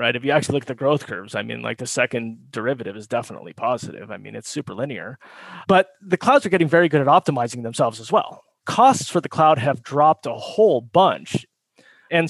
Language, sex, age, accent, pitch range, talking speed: English, male, 30-49, American, 130-175 Hz, 220 wpm